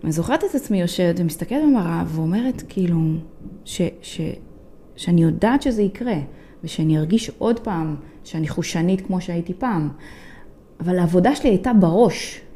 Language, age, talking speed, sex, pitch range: Hebrew, 20-39, 140 wpm, female, 180-265 Hz